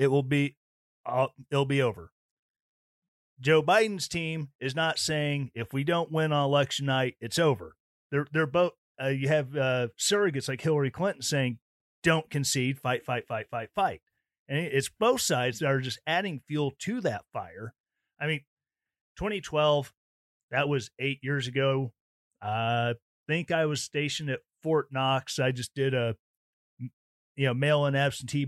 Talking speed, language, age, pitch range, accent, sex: 160 wpm, English, 40-59, 125-155 Hz, American, male